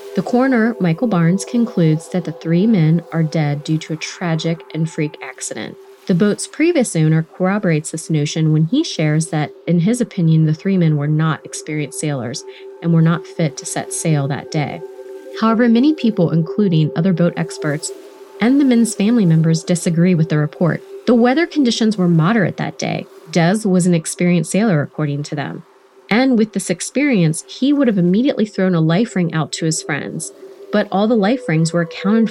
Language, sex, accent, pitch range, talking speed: English, female, American, 165-225 Hz, 190 wpm